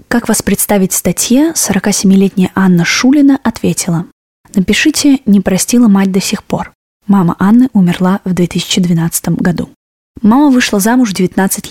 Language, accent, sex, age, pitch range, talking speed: Russian, native, female, 20-39, 185-230 Hz, 140 wpm